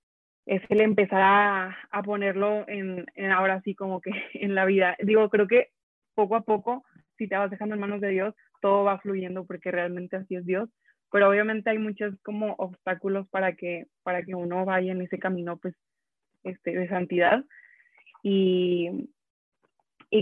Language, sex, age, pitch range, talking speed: Spanish, female, 20-39, 190-230 Hz, 170 wpm